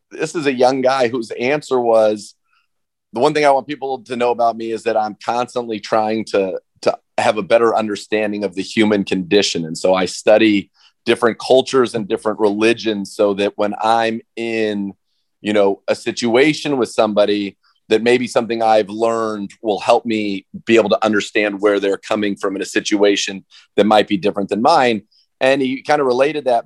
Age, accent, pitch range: 30-49, American, 105-120 Hz